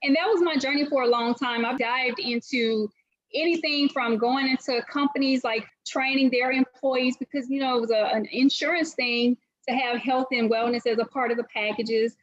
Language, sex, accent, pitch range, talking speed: English, female, American, 225-270 Hz, 200 wpm